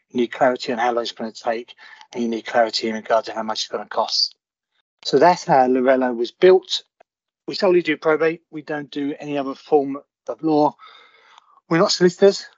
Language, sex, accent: English, male, British